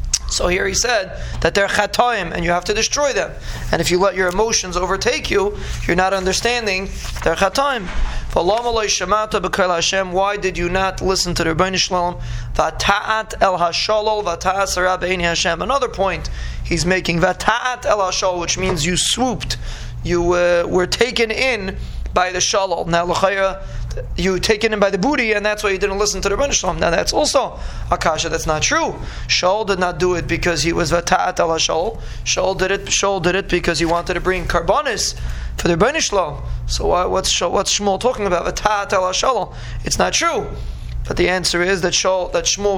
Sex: male